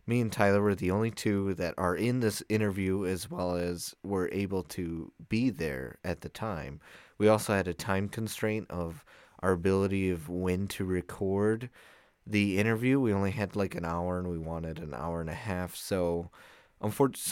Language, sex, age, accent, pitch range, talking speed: English, male, 30-49, American, 90-115 Hz, 185 wpm